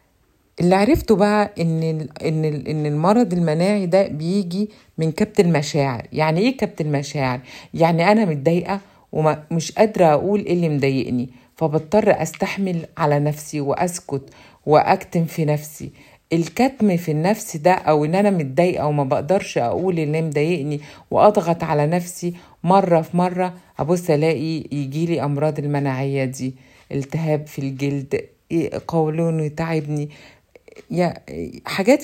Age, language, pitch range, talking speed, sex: 50-69, Arabic, 150-185 Hz, 125 wpm, female